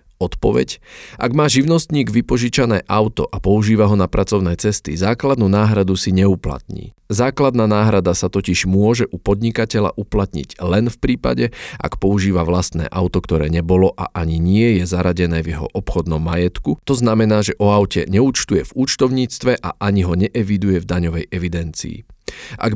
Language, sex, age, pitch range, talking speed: Slovak, male, 40-59, 90-110 Hz, 155 wpm